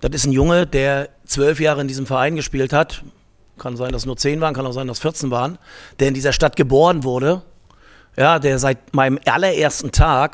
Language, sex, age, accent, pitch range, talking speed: German, male, 50-69, German, 105-150 Hz, 210 wpm